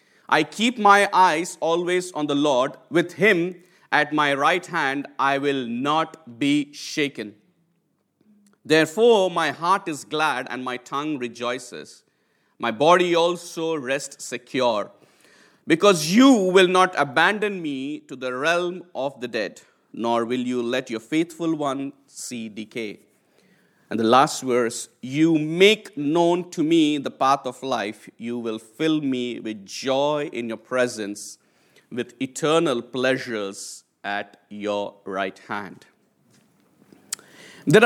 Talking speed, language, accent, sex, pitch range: 135 wpm, English, Indian, male, 125-175 Hz